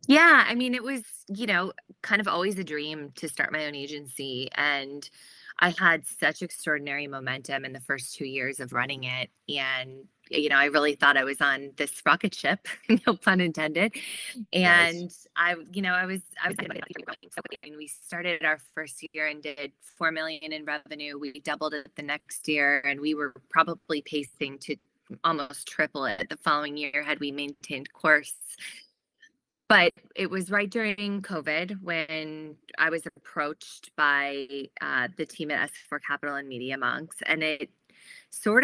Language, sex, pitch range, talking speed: English, female, 145-175 Hz, 175 wpm